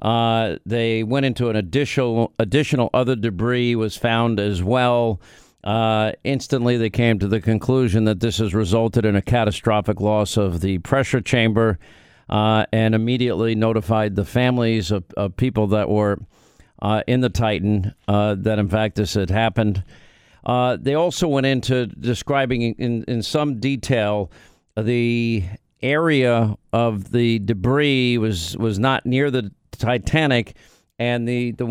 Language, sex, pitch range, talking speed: English, male, 105-125 Hz, 150 wpm